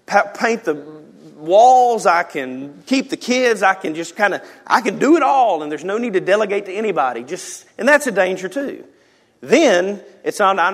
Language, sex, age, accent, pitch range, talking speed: English, male, 40-59, American, 165-220 Hz, 195 wpm